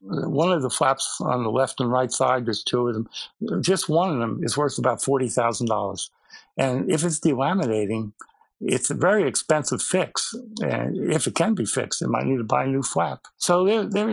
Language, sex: English, male